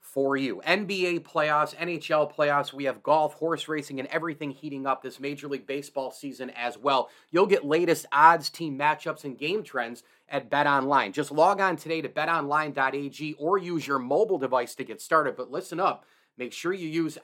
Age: 30-49